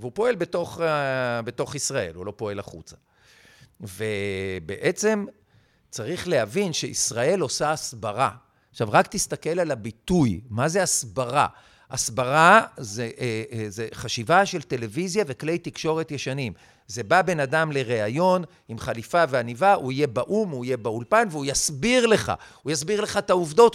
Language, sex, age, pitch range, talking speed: Hebrew, male, 50-69, 130-195 Hz, 135 wpm